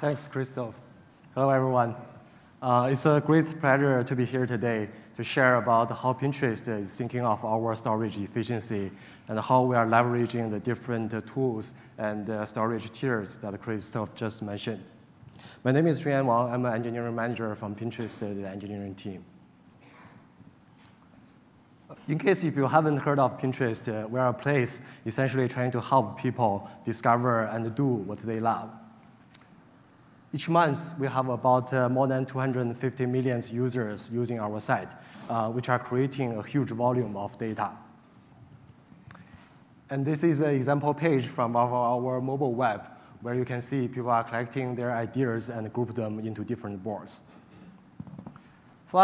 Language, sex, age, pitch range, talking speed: English, male, 20-39, 115-135 Hz, 160 wpm